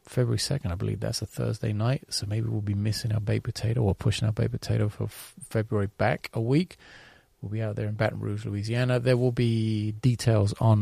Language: English